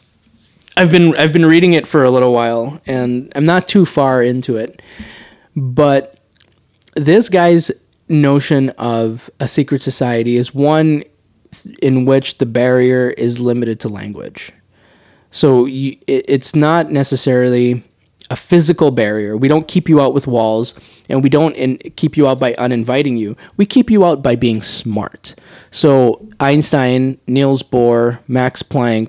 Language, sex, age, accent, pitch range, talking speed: English, male, 20-39, American, 120-150 Hz, 155 wpm